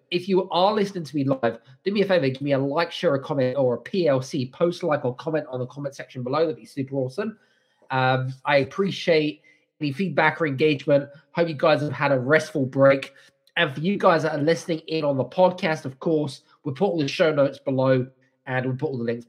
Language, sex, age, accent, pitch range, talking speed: English, male, 20-39, British, 130-170 Hz, 235 wpm